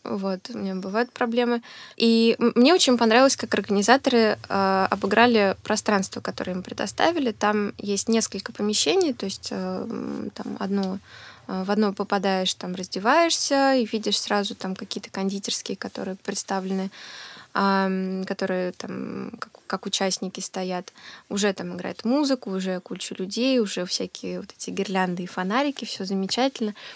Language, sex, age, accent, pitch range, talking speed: Russian, female, 20-39, native, 190-230 Hz, 140 wpm